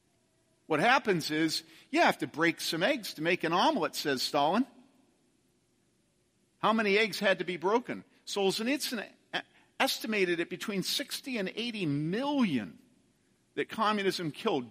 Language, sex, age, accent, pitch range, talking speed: English, male, 50-69, American, 175-245 Hz, 135 wpm